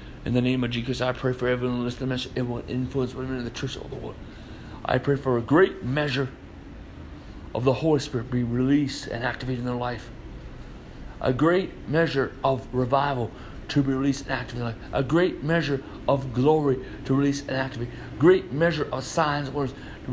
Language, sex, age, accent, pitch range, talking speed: English, male, 60-79, American, 125-150 Hz, 215 wpm